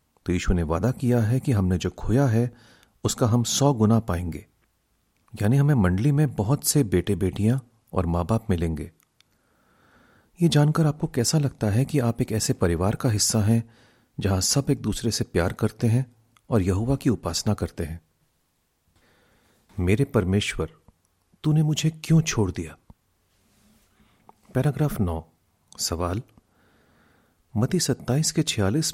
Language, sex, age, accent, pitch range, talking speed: Hindi, male, 40-59, native, 90-135 Hz, 145 wpm